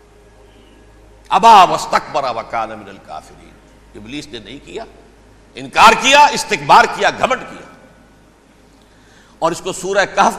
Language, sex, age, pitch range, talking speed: Urdu, male, 60-79, 120-185 Hz, 115 wpm